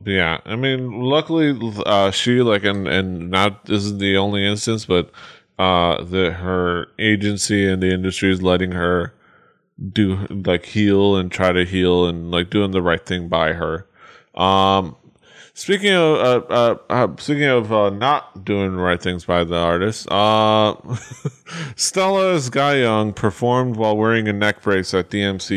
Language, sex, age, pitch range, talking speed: English, male, 20-39, 90-115 Hz, 160 wpm